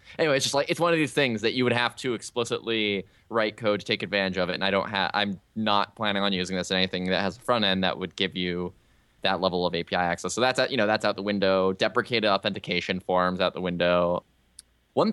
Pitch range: 95-120 Hz